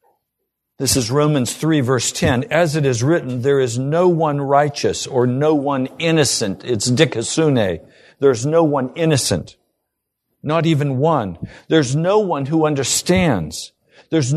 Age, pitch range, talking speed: 60-79, 140-170 Hz, 140 wpm